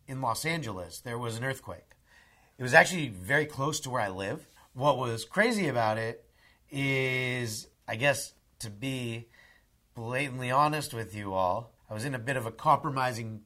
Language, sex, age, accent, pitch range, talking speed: English, male, 30-49, American, 105-135 Hz, 175 wpm